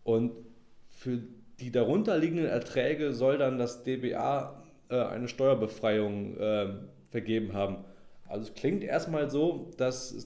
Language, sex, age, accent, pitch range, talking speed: German, male, 20-39, German, 110-125 Hz, 130 wpm